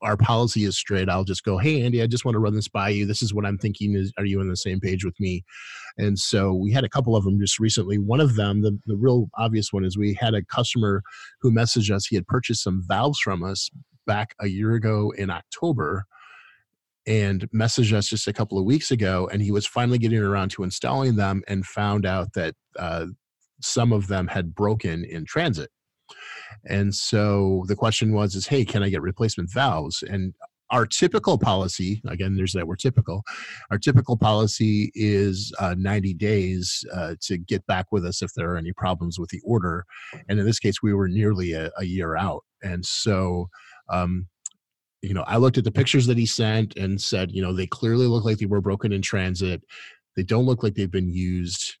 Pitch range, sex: 95-110 Hz, male